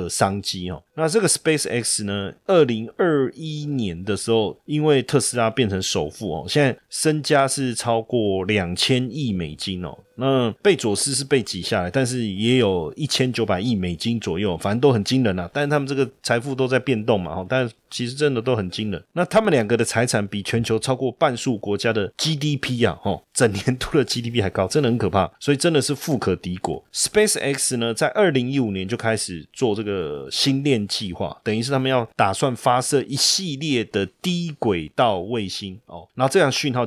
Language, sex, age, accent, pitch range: Chinese, male, 20-39, native, 105-135 Hz